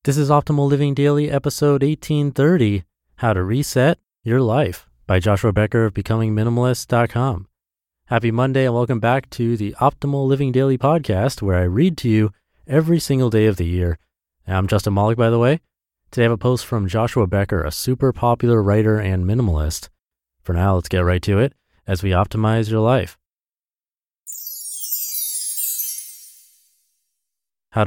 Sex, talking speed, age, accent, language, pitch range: male, 155 wpm, 30-49, American, English, 95-130 Hz